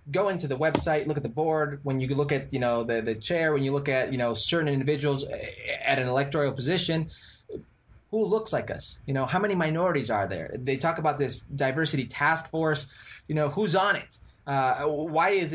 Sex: male